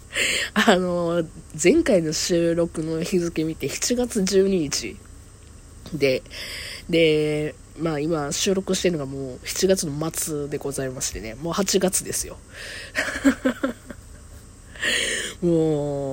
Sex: female